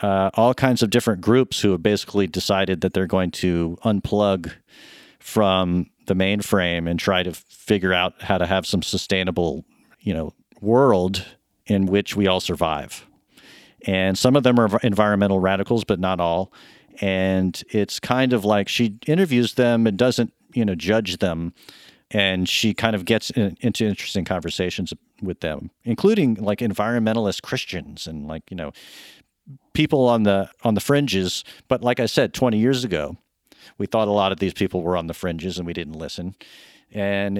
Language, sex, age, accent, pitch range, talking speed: English, male, 40-59, American, 95-115 Hz, 170 wpm